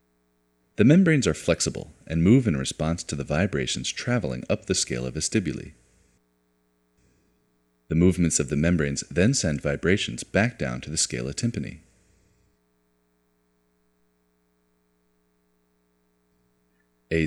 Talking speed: 110 wpm